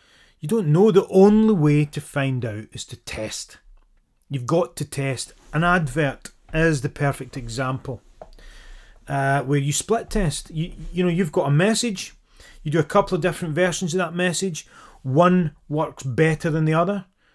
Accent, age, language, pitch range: British, 30-49, English, 140-175 Hz